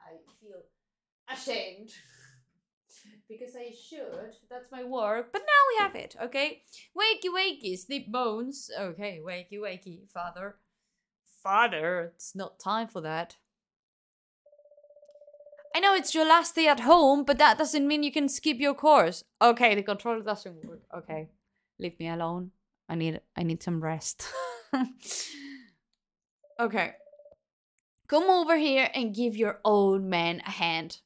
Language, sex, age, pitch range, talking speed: Italian, female, 20-39, 185-290 Hz, 140 wpm